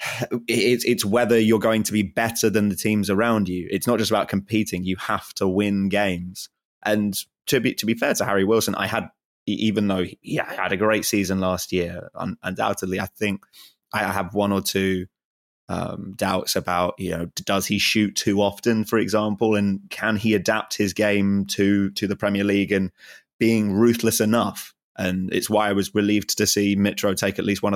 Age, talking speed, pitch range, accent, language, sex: 20-39, 195 wpm, 95-110 Hz, British, English, male